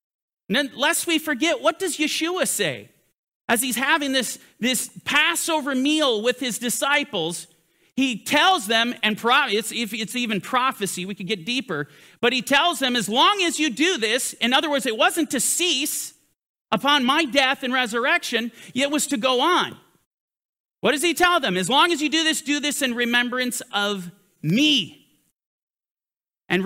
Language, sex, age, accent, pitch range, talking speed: English, male, 40-59, American, 220-295 Hz, 175 wpm